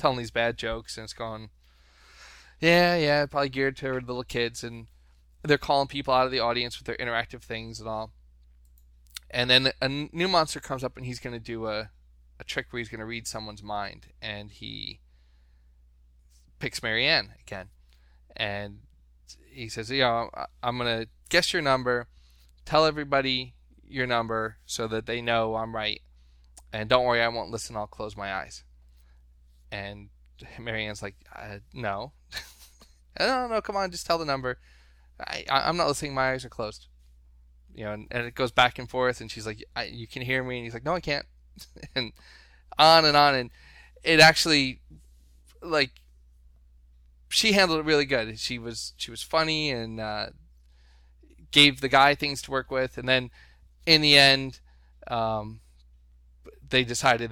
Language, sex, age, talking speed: English, male, 20-39, 175 wpm